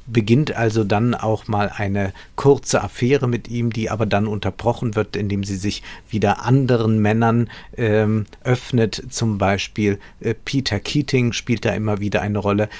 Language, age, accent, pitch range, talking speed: German, 50-69, German, 105-120 Hz, 160 wpm